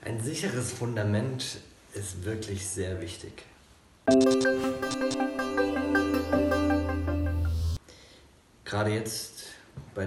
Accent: German